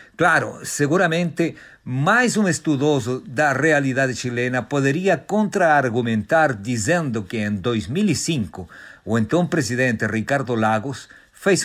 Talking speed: 105 wpm